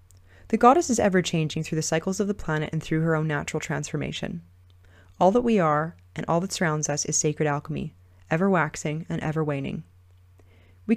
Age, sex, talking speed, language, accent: 30-49, female, 175 wpm, English, American